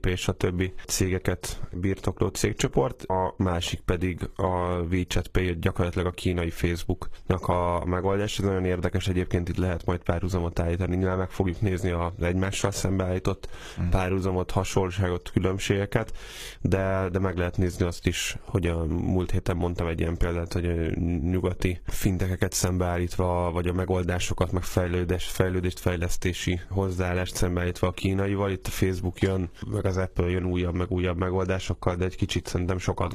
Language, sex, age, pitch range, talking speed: Hungarian, male, 10-29, 90-95 Hz, 150 wpm